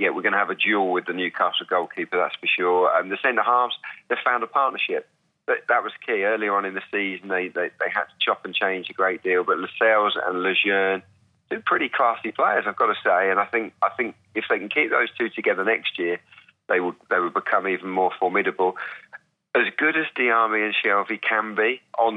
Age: 30-49